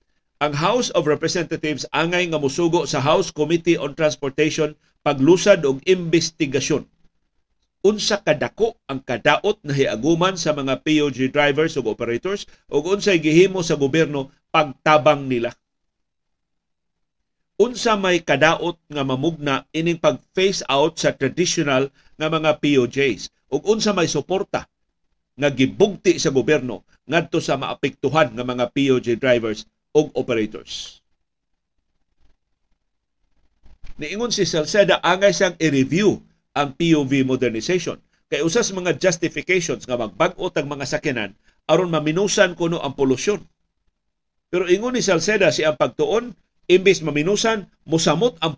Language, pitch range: Filipino, 140-180 Hz